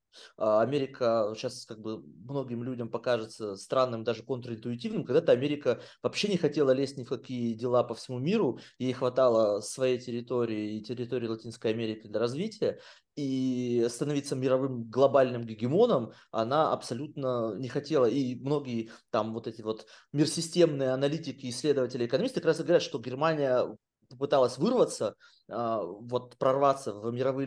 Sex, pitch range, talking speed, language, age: male, 120-165 Hz, 140 wpm, Russian, 20-39